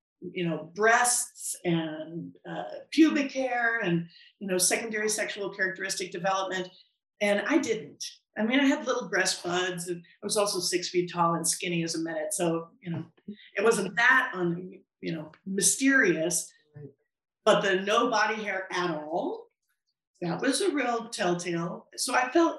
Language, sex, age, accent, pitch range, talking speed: English, female, 50-69, American, 180-250 Hz, 160 wpm